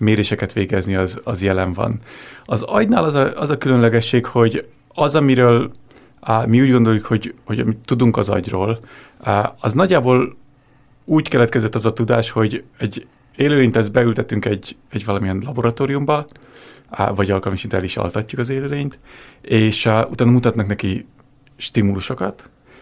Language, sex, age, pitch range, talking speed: Hungarian, male, 30-49, 100-130 Hz, 145 wpm